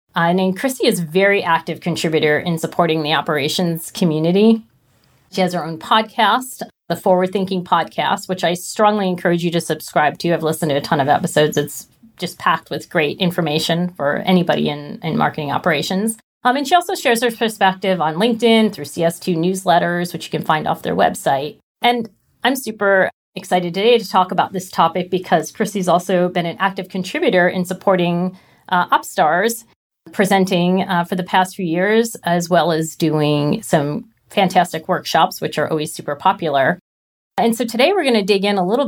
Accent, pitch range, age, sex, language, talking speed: American, 165-205 Hz, 40-59, female, English, 185 wpm